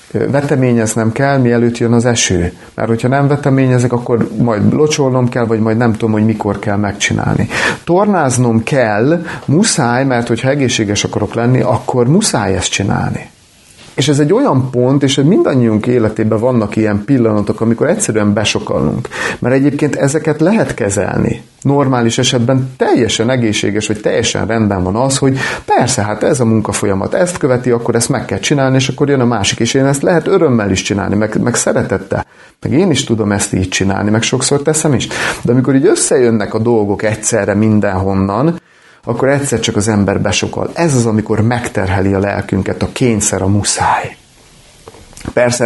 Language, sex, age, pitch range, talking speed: Hungarian, male, 40-59, 105-130 Hz, 165 wpm